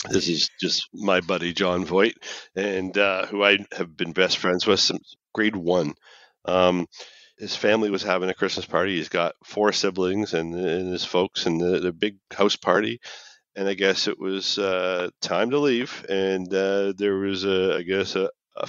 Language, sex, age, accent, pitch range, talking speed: English, male, 40-59, American, 95-125 Hz, 185 wpm